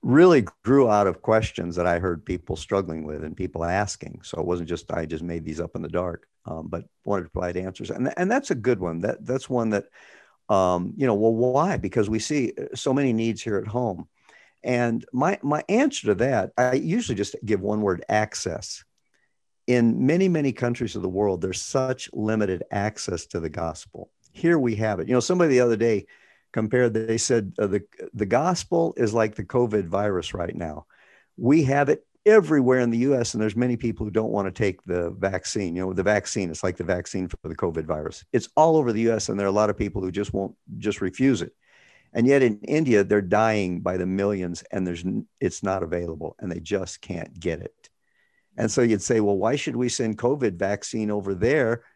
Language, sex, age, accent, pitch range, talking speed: English, male, 50-69, American, 95-125 Hz, 220 wpm